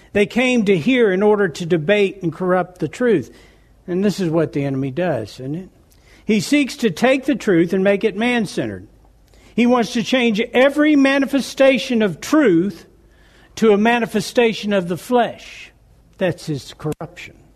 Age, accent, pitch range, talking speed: 60-79, American, 150-225 Hz, 165 wpm